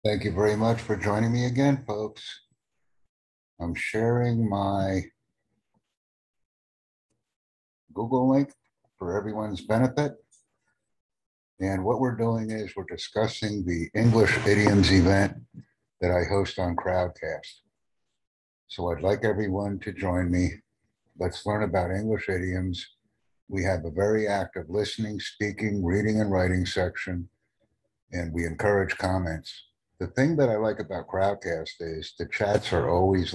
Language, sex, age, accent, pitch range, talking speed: English, male, 60-79, American, 90-110 Hz, 130 wpm